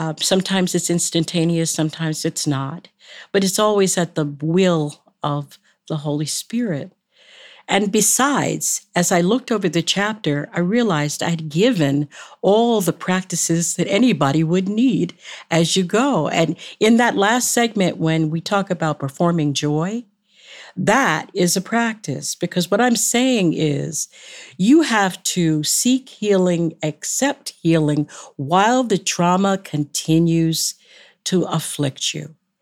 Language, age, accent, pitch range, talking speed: English, 50-69, American, 160-215 Hz, 135 wpm